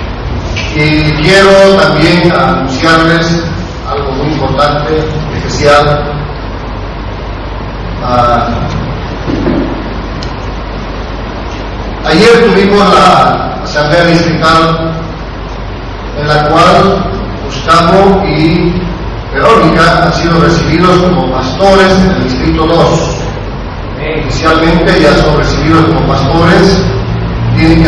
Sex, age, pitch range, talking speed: male, 40-59, 115-175 Hz, 80 wpm